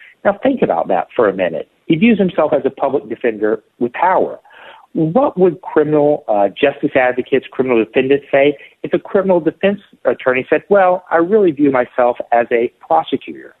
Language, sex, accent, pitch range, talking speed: English, male, American, 115-160 Hz, 170 wpm